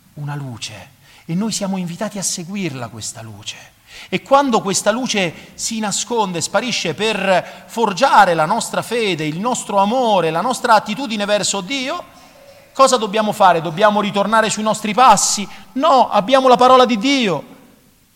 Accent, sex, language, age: native, male, Italian, 40-59